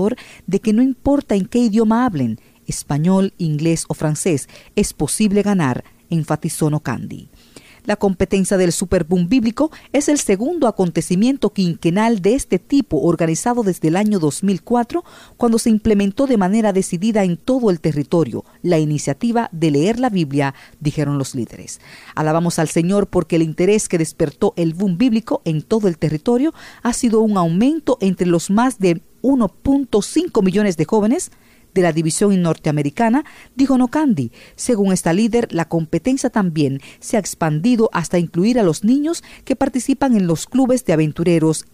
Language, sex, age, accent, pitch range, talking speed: English, female, 40-59, American, 165-230 Hz, 160 wpm